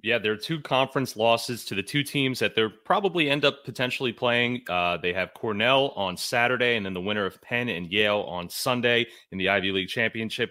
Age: 30-49